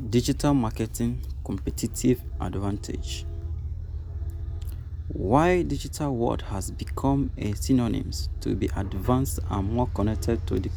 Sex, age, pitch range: male, 20-39, 85-110 Hz